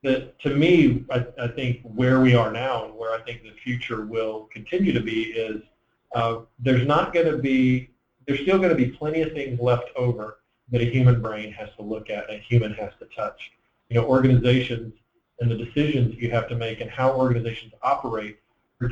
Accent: American